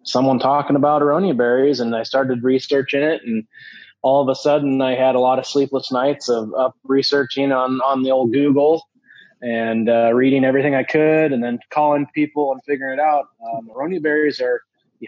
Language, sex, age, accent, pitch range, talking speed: English, male, 20-39, American, 120-145 Hz, 195 wpm